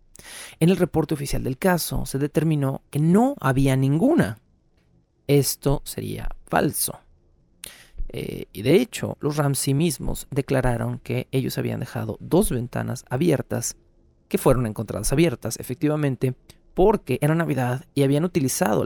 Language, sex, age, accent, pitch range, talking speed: Spanish, male, 40-59, Mexican, 115-150 Hz, 130 wpm